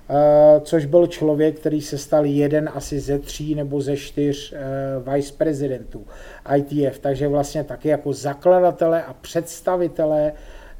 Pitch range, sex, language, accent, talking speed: 140-155 Hz, male, Czech, native, 140 wpm